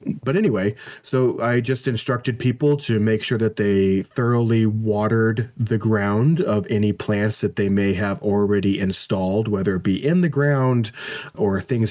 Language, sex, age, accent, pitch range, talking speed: English, male, 30-49, American, 100-115 Hz, 165 wpm